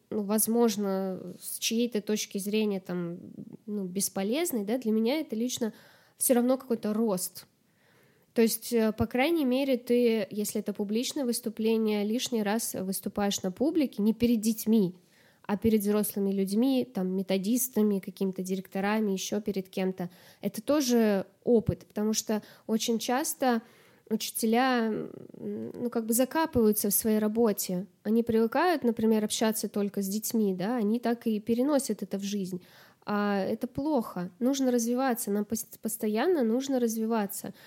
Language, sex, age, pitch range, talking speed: Russian, female, 10-29, 200-240 Hz, 135 wpm